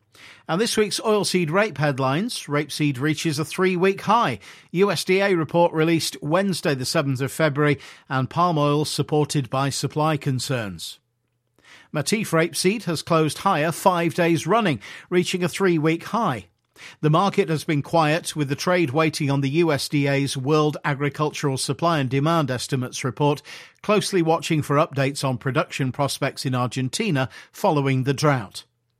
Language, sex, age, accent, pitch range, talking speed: English, male, 50-69, British, 140-170 Hz, 145 wpm